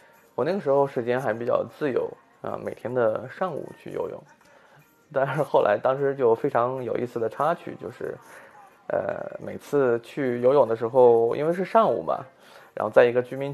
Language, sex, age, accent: Chinese, male, 20-39, native